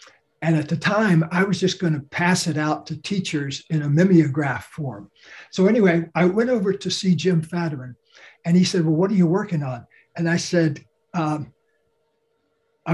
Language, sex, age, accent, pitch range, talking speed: English, male, 60-79, American, 155-185 Hz, 185 wpm